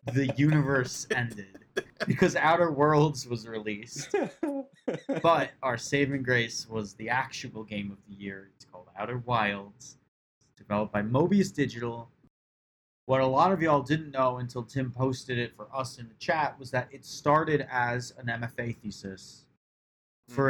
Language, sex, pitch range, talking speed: English, male, 110-145 Hz, 150 wpm